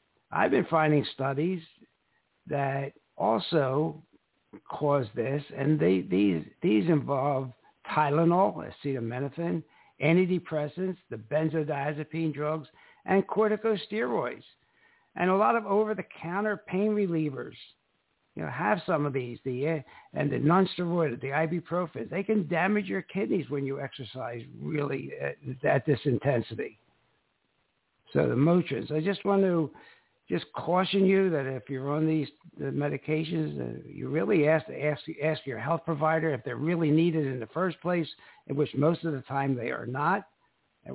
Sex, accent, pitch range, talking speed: male, American, 135-165 Hz, 150 wpm